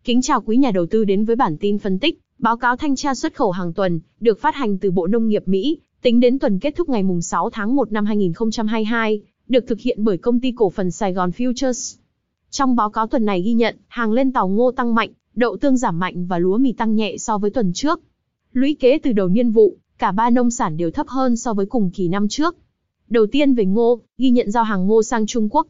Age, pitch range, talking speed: 20-39, 205-255 Hz, 250 wpm